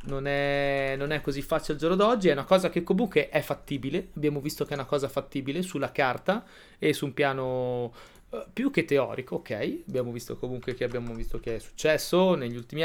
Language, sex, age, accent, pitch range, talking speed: Italian, male, 20-39, native, 130-165 Hz, 205 wpm